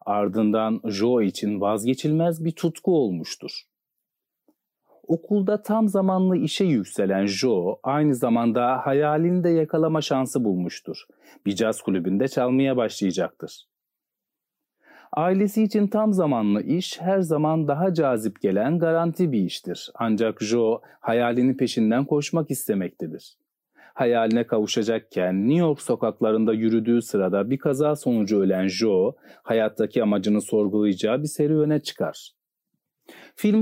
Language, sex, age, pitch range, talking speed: Turkish, male, 40-59, 115-165 Hz, 115 wpm